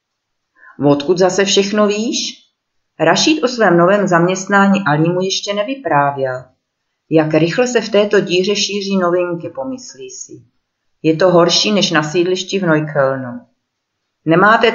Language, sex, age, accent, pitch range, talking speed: Czech, female, 40-59, native, 155-200 Hz, 130 wpm